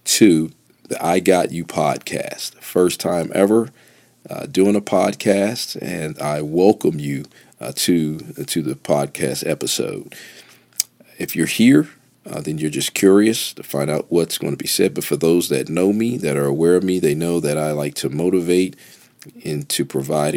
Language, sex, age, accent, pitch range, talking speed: English, male, 40-59, American, 75-95 Hz, 180 wpm